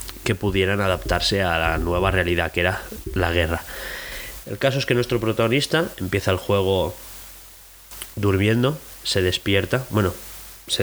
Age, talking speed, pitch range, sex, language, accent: 20-39, 140 wpm, 90-120 Hz, male, Spanish, Spanish